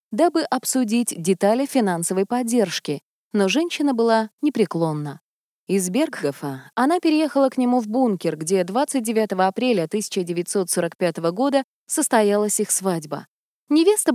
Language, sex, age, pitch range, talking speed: Russian, female, 20-39, 185-275 Hz, 110 wpm